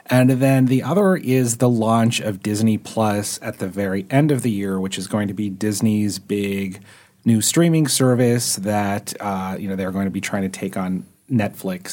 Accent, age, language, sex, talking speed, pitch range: American, 30-49, English, male, 200 wpm, 100-125 Hz